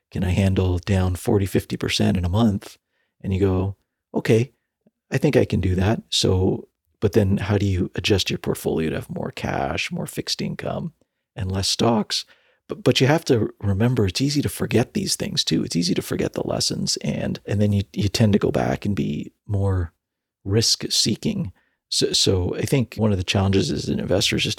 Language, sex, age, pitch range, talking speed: English, male, 40-59, 95-115 Hz, 205 wpm